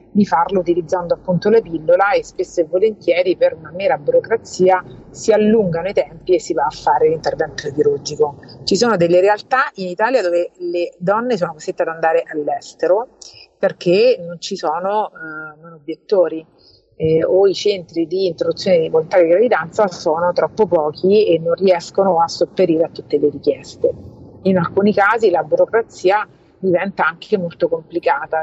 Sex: female